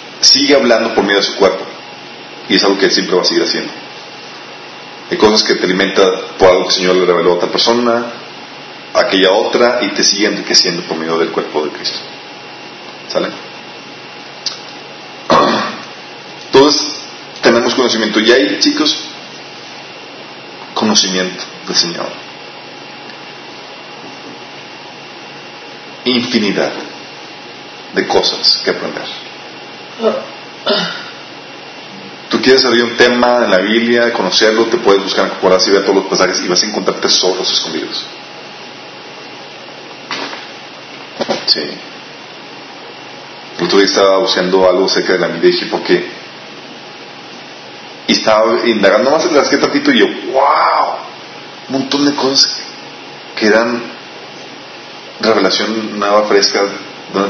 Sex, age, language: male, 40-59, Spanish